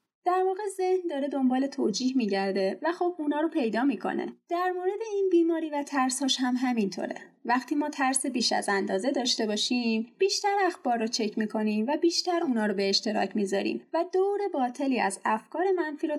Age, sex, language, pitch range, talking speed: 30-49, female, Persian, 225-340 Hz, 180 wpm